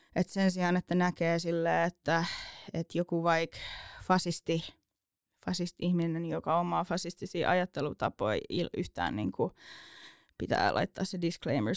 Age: 20-39